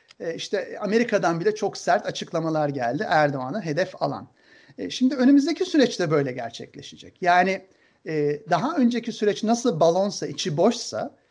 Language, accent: Turkish, native